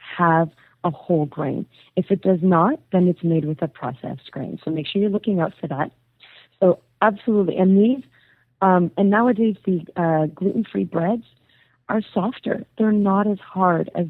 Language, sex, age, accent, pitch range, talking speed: English, female, 40-59, American, 155-200 Hz, 175 wpm